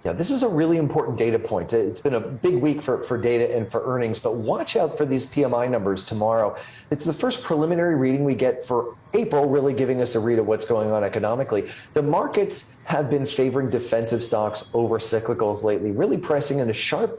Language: English